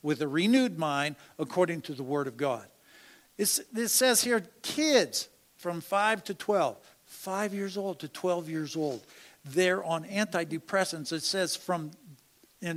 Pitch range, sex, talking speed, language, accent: 165-205 Hz, male, 150 wpm, English, American